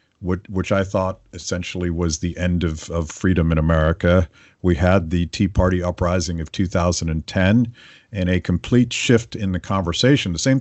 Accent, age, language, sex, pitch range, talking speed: American, 50-69, English, male, 90-115 Hz, 165 wpm